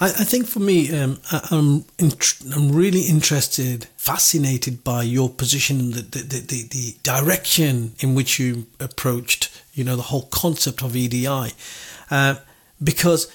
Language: English